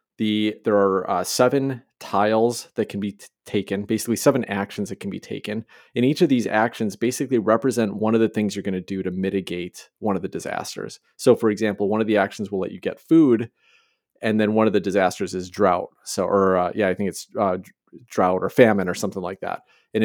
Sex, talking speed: male, 225 wpm